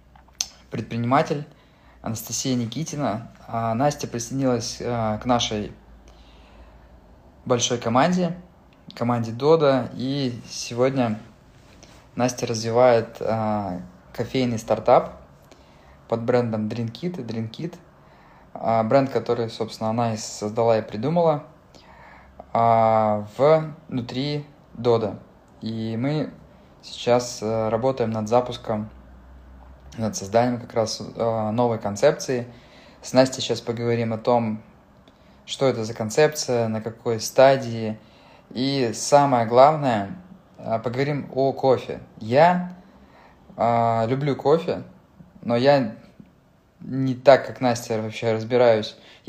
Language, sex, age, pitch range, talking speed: Russian, male, 20-39, 110-130 Hz, 95 wpm